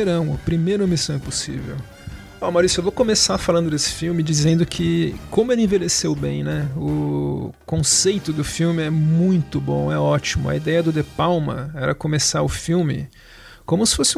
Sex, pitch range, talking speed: male, 140-195 Hz, 175 wpm